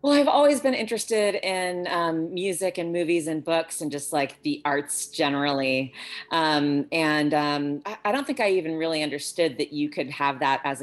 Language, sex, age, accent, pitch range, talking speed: English, female, 30-49, American, 140-175 Hz, 195 wpm